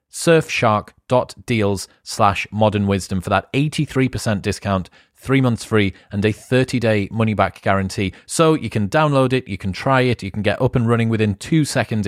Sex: male